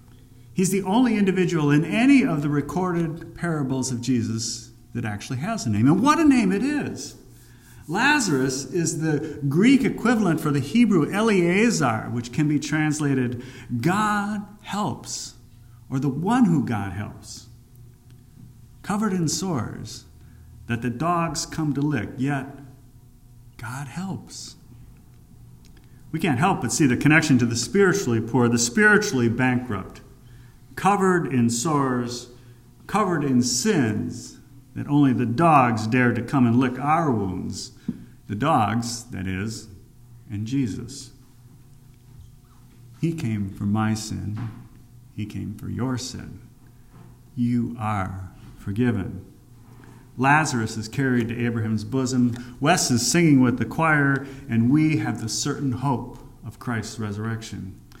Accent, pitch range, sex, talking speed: American, 120-150 Hz, male, 130 wpm